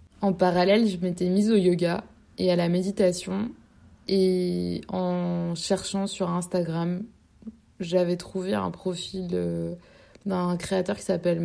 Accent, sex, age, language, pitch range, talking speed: French, female, 20-39, French, 175-200 Hz, 125 wpm